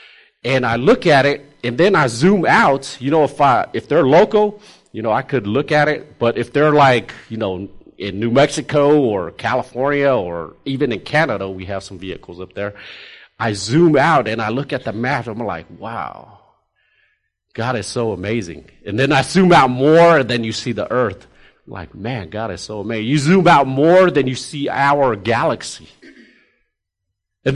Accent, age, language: American, 40-59, English